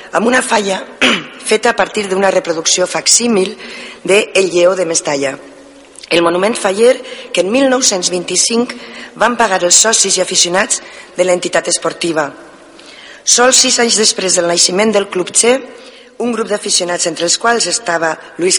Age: 40-59